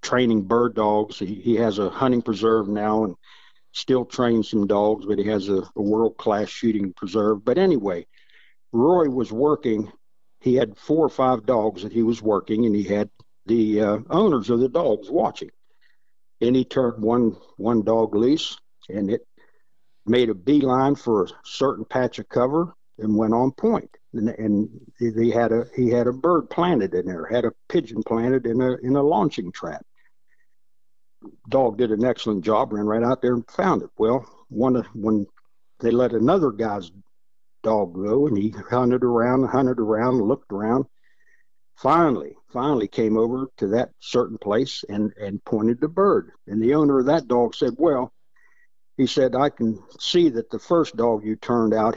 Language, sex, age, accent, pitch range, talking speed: English, male, 60-79, American, 110-130 Hz, 180 wpm